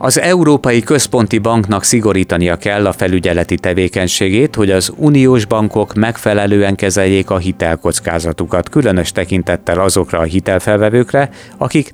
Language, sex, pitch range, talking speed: Hungarian, male, 90-110 Hz, 115 wpm